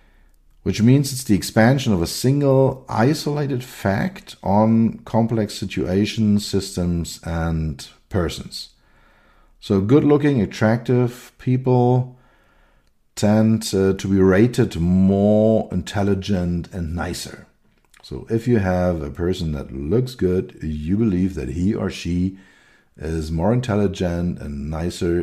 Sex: male